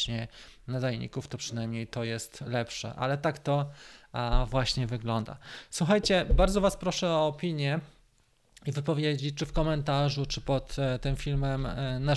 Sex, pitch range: male, 125-155 Hz